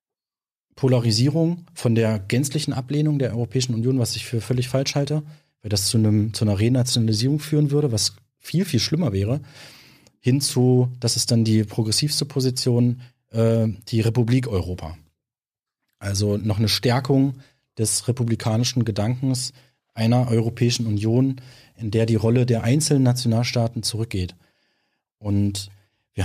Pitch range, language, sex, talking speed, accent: 110-130 Hz, German, male, 135 wpm, German